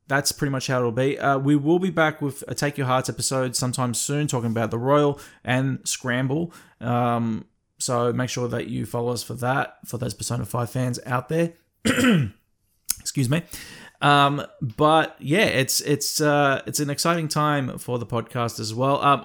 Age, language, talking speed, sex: 20-39, English, 180 wpm, male